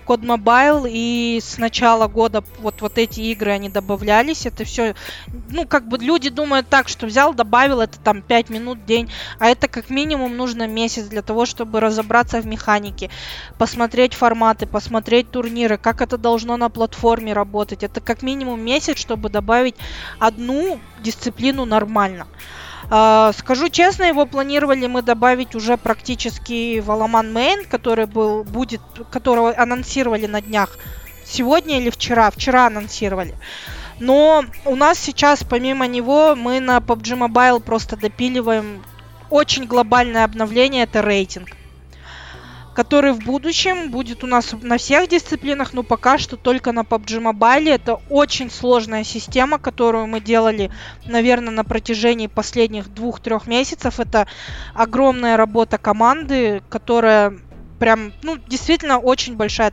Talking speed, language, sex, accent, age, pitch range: 140 wpm, Russian, female, native, 20-39, 220-255 Hz